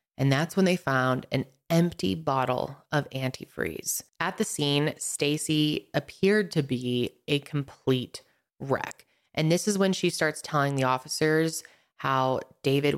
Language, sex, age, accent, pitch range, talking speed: English, female, 20-39, American, 135-175 Hz, 145 wpm